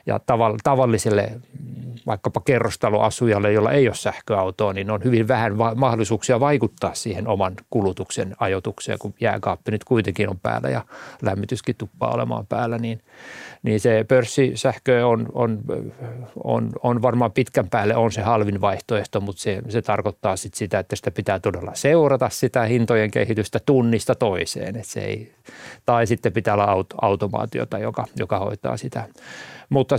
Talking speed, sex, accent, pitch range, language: 145 wpm, male, native, 105-125 Hz, Finnish